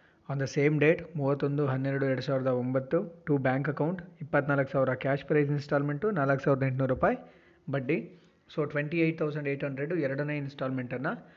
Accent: native